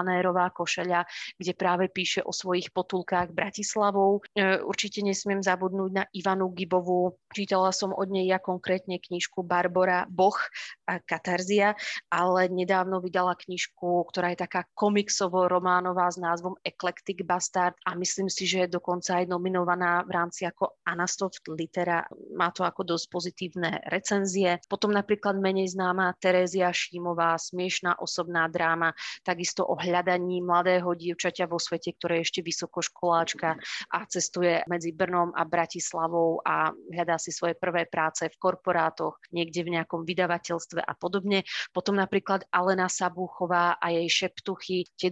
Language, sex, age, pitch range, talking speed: Slovak, female, 30-49, 175-185 Hz, 140 wpm